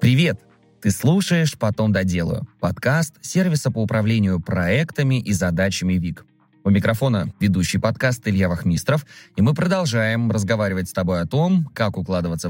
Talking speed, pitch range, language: 140 wpm, 95-135 Hz, Russian